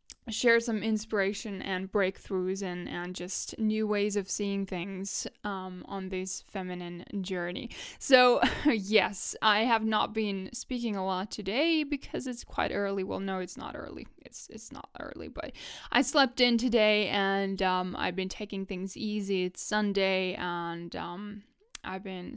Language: English